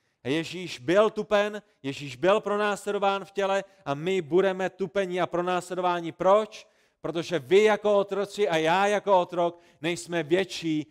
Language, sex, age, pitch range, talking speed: Czech, male, 40-59, 135-190 Hz, 140 wpm